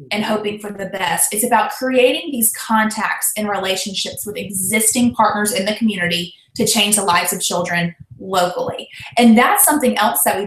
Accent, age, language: American, 20-39, English